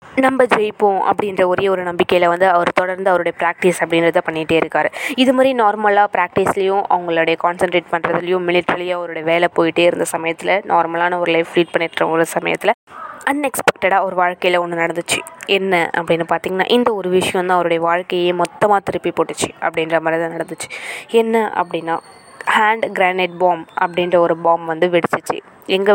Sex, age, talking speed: female, 20-39, 150 wpm